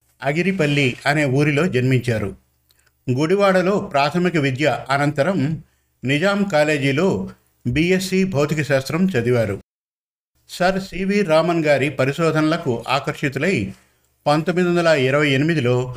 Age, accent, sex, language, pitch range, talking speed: 50-69, native, male, Telugu, 135-170 Hz, 80 wpm